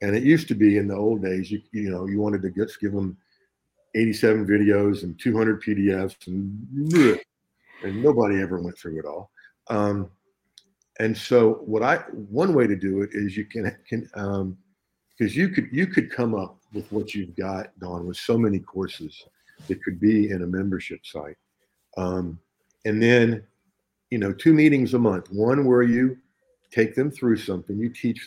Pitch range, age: 95-110 Hz, 50-69